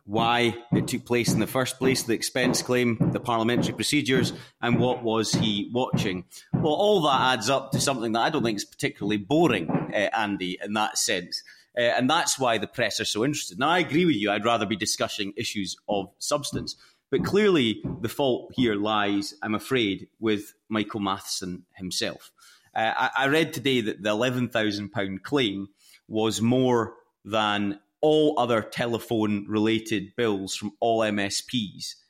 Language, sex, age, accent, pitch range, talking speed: English, male, 30-49, British, 105-130 Hz, 170 wpm